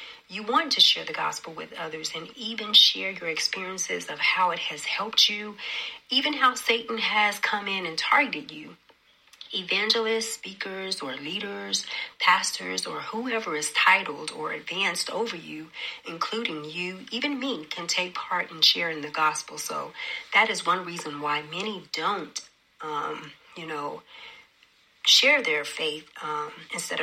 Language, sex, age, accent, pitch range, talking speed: English, female, 40-59, American, 160-225 Hz, 150 wpm